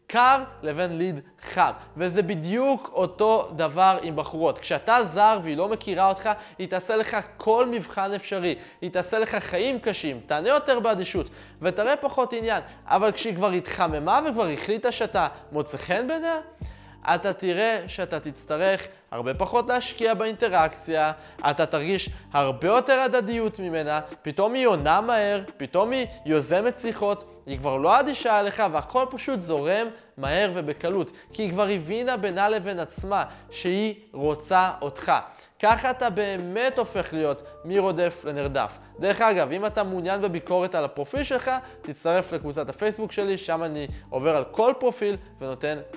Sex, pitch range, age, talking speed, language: male, 165-225 Hz, 20-39, 145 wpm, Hebrew